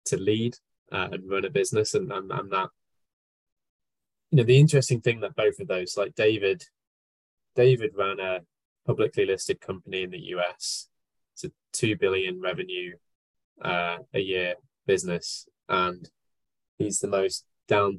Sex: male